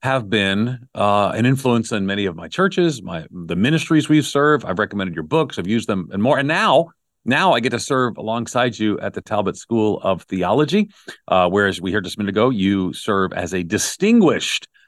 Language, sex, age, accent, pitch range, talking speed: English, male, 40-59, American, 95-125 Hz, 210 wpm